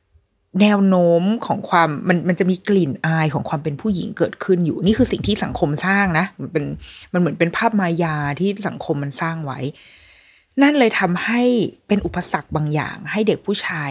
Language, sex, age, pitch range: Thai, female, 20-39, 150-200 Hz